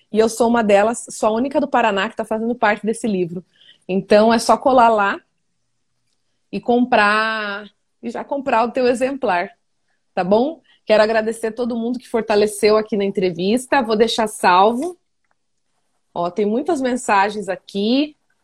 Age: 20-39